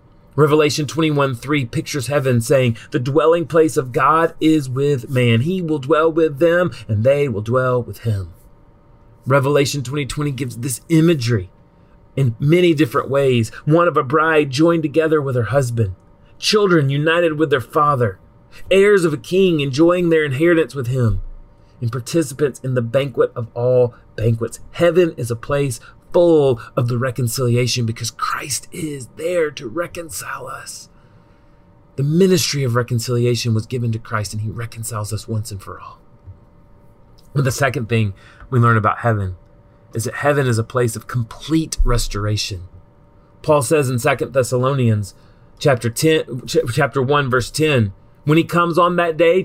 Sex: male